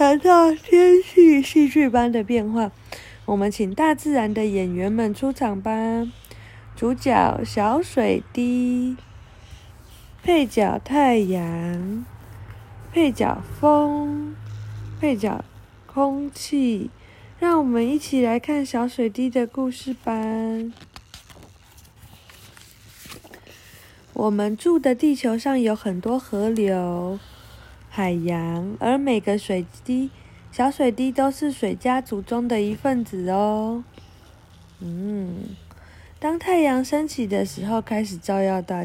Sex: female